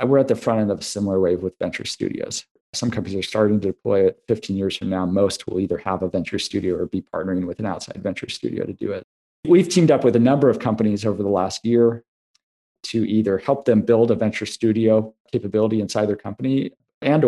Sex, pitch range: male, 100-115 Hz